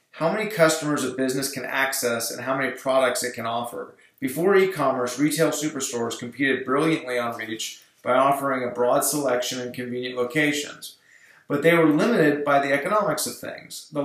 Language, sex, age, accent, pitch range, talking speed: English, male, 30-49, American, 125-150 Hz, 170 wpm